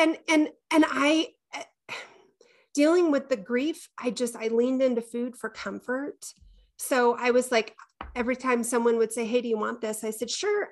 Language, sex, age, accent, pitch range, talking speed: English, female, 30-49, American, 210-250 Hz, 185 wpm